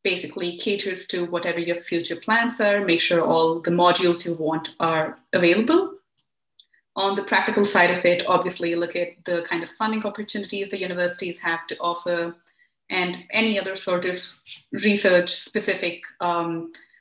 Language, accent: English, Indian